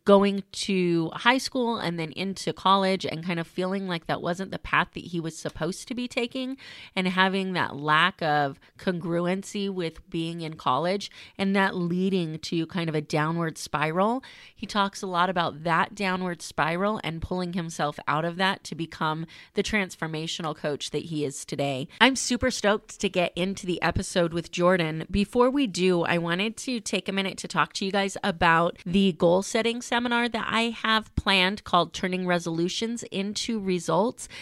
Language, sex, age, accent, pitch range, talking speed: English, female, 30-49, American, 165-200 Hz, 180 wpm